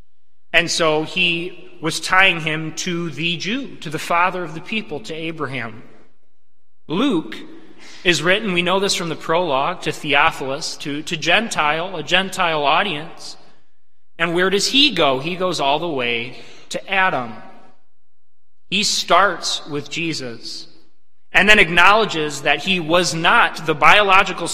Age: 30-49